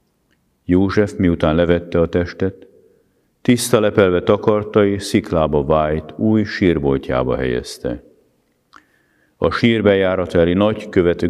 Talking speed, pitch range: 95 wpm, 75-95 Hz